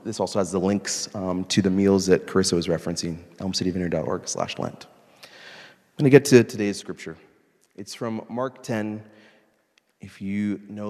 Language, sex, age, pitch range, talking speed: English, male, 30-49, 100-130 Hz, 165 wpm